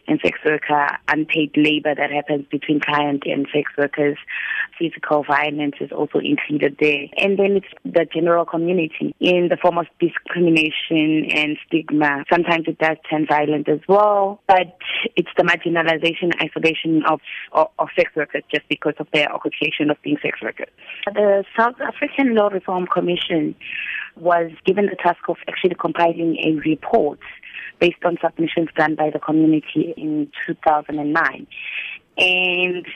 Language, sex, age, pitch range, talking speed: English, female, 20-39, 150-180 Hz, 150 wpm